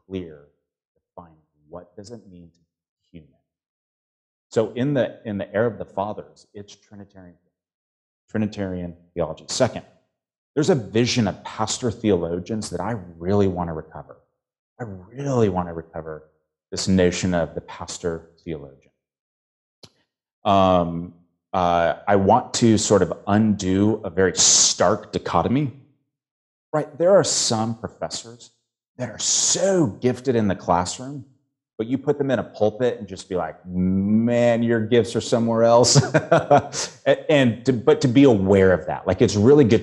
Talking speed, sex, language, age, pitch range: 155 wpm, male, English, 30-49, 90-120 Hz